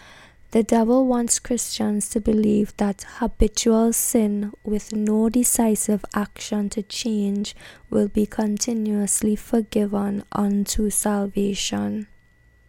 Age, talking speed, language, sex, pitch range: 10-29, 100 wpm, English, female, 205-230 Hz